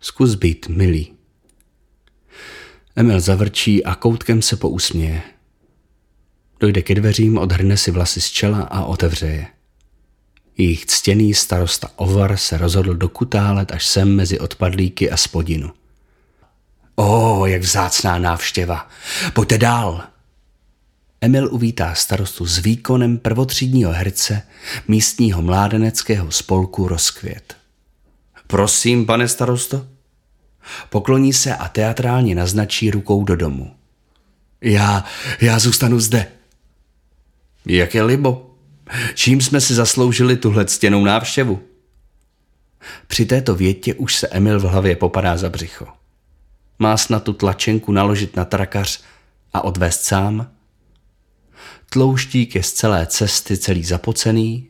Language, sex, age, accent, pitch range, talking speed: Czech, male, 40-59, native, 90-115 Hz, 115 wpm